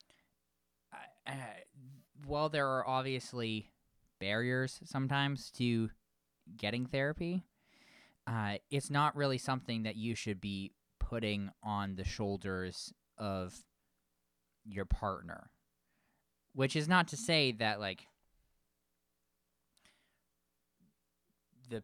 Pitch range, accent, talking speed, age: 90-130 Hz, American, 95 wpm, 20-39